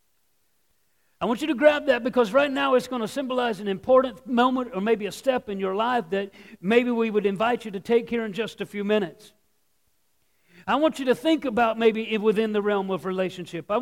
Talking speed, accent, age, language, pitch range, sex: 215 wpm, American, 50-69, English, 215-260 Hz, male